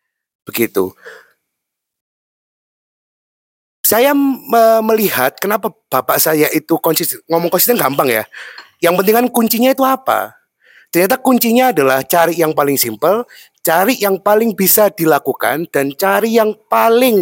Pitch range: 150-220 Hz